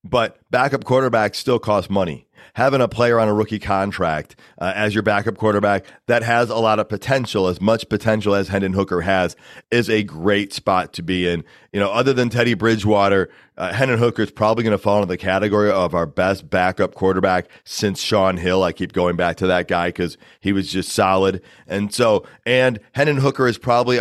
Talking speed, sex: 205 wpm, male